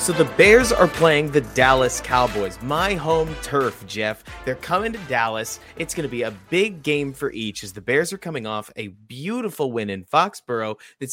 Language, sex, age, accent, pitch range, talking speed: English, male, 30-49, American, 115-150 Hz, 200 wpm